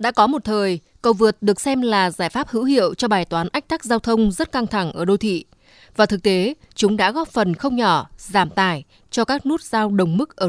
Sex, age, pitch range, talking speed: female, 20-39, 185-240 Hz, 250 wpm